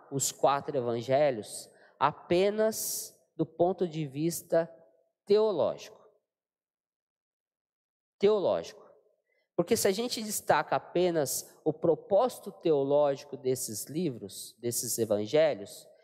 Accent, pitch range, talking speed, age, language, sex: Brazilian, 135-185 Hz, 85 wpm, 20-39, Portuguese, male